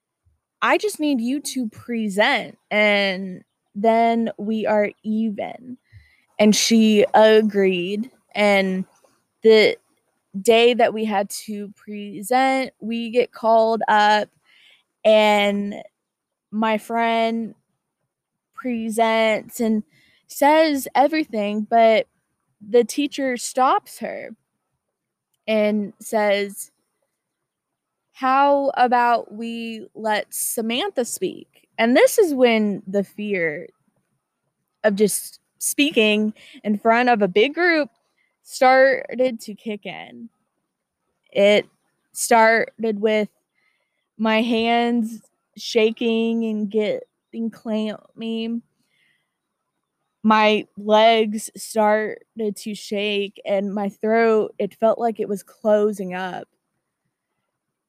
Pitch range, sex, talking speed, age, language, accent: 210-240 Hz, female, 90 wpm, 20-39, English, American